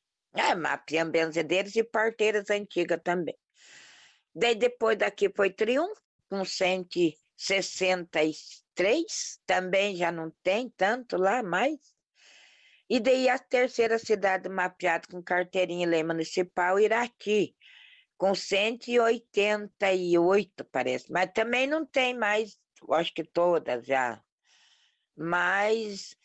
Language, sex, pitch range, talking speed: English, female, 175-235 Hz, 105 wpm